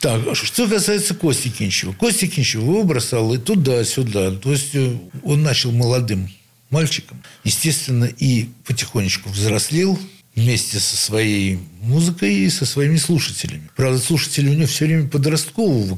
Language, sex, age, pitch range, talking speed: Russian, male, 60-79, 115-155 Hz, 135 wpm